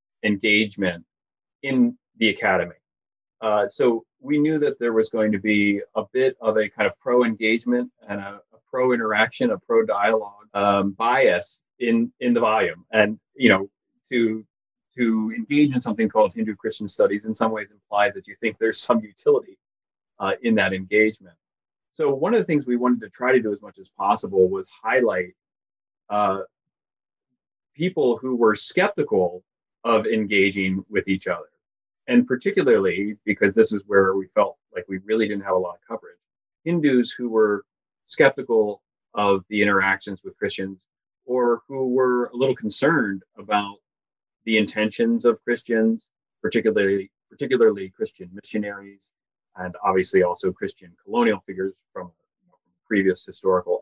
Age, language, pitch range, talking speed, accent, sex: 30-49, English, 100-130 Hz, 150 wpm, American, male